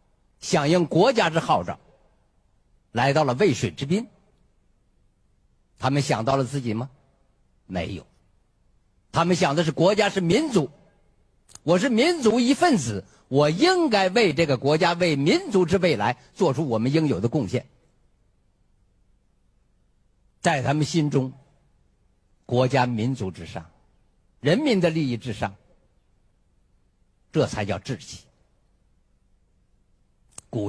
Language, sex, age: Chinese, male, 50-69